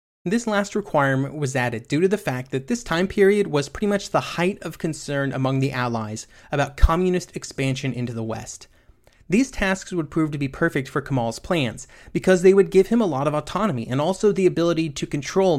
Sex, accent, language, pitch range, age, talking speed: male, American, English, 130-180 Hz, 30-49, 210 wpm